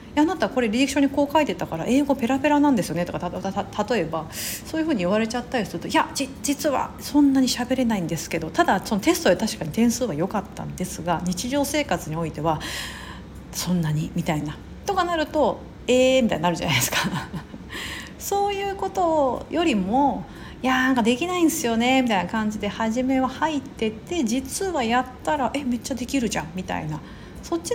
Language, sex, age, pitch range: Japanese, female, 40-59, 185-290 Hz